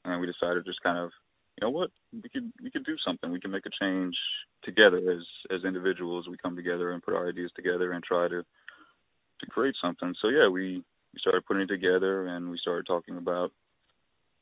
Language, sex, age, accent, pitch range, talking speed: English, male, 20-39, American, 90-95 Hz, 215 wpm